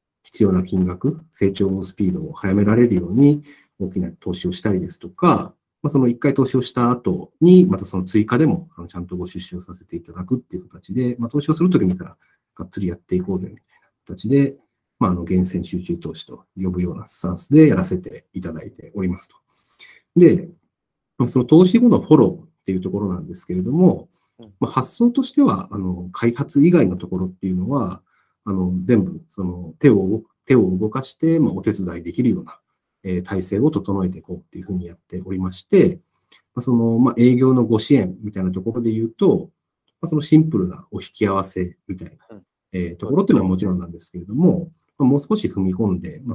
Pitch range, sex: 90-140 Hz, male